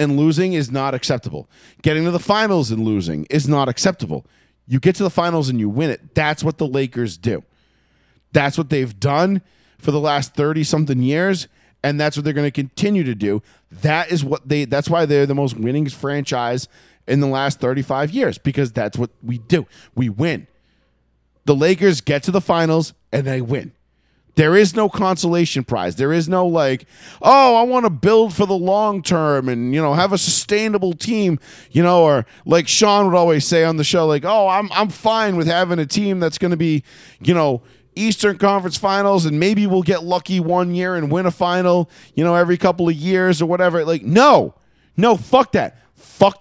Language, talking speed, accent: English, 205 wpm, American